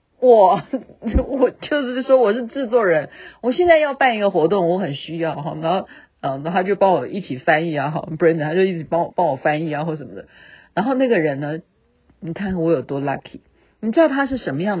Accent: native